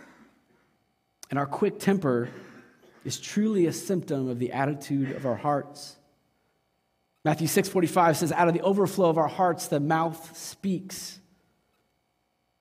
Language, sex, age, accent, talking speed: English, male, 30-49, American, 130 wpm